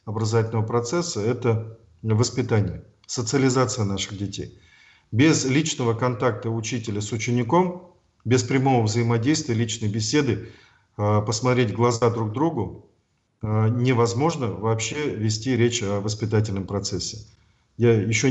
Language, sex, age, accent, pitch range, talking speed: Russian, male, 40-59, native, 110-130 Hz, 105 wpm